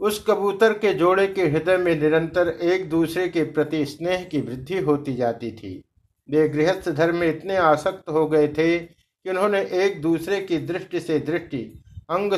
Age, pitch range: 60-79, 130-170 Hz